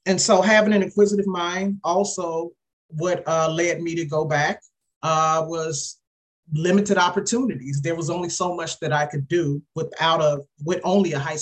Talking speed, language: 175 wpm, English